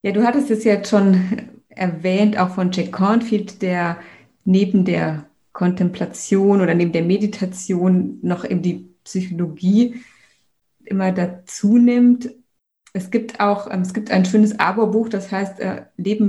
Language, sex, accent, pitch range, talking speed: German, female, German, 185-220 Hz, 135 wpm